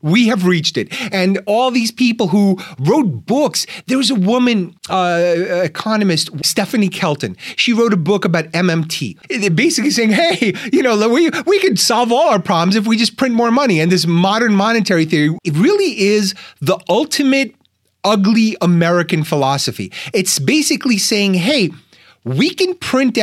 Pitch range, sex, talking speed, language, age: 180-250 Hz, male, 165 wpm, English, 30-49